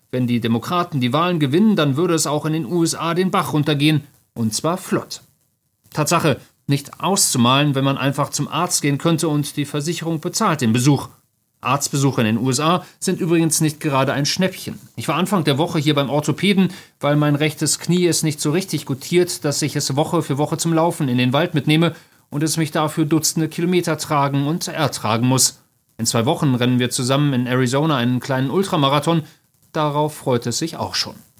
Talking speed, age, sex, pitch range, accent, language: 195 wpm, 40-59, male, 135-170 Hz, German, German